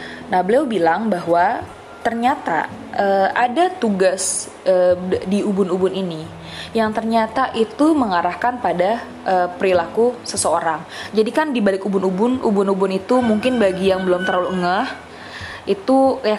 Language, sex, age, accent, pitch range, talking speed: Indonesian, female, 20-39, native, 180-225 Hz, 125 wpm